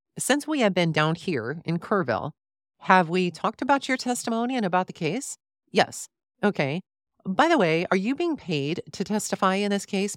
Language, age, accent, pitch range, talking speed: English, 40-59, American, 155-205 Hz, 190 wpm